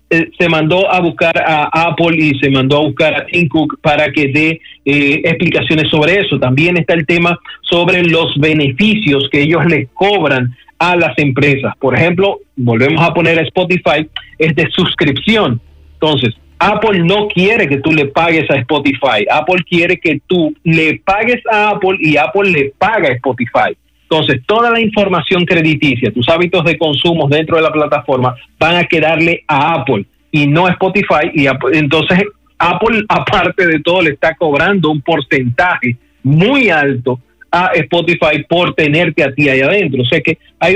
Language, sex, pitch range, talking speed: Spanish, male, 145-180 Hz, 170 wpm